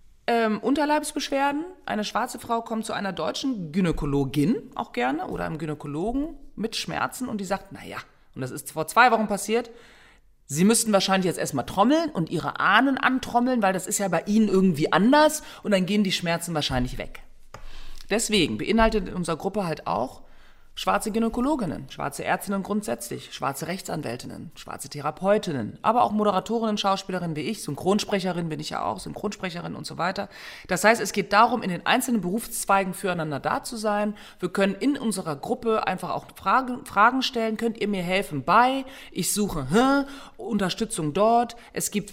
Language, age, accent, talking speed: German, 30-49, German, 165 wpm